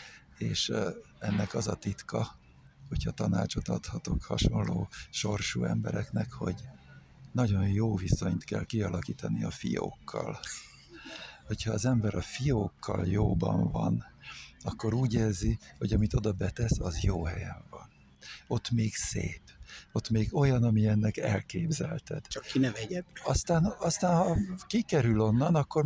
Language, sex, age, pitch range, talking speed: Hungarian, male, 60-79, 105-135 Hz, 125 wpm